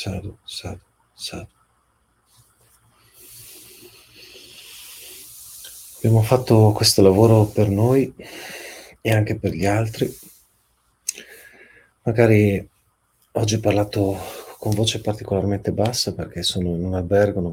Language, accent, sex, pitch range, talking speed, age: Italian, native, male, 90-105 Hz, 95 wpm, 40-59